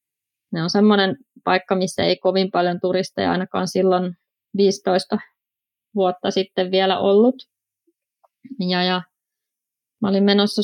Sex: female